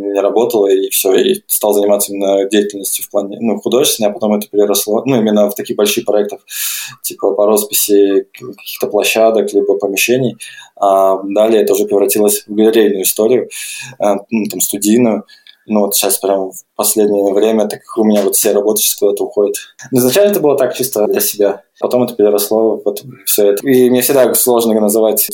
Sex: male